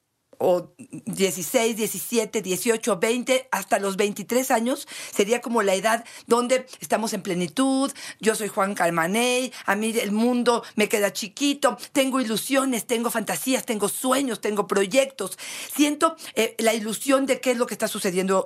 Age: 50-69